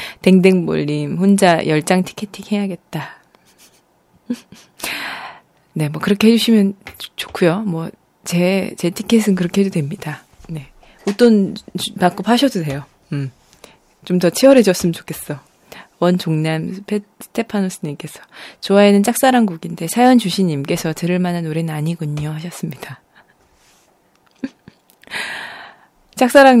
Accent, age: native, 20-39